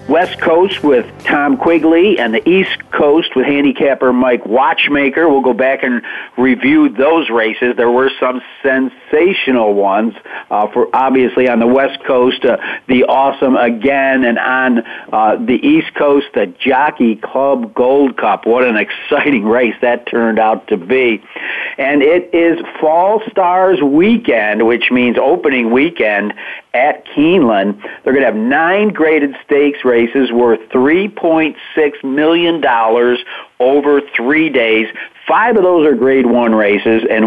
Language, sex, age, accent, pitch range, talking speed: English, male, 50-69, American, 120-150 Hz, 145 wpm